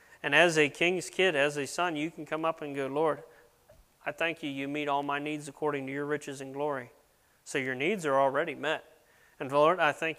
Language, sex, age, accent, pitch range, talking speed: English, male, 30-49, American, 140-165 Hz, 230 wpm